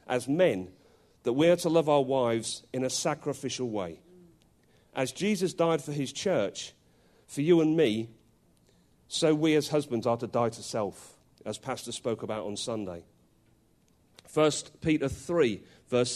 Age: 40-59